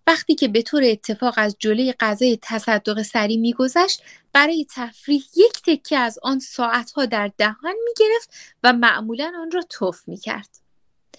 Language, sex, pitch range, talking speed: Persian, female, 230-320 Hz, 150 wpm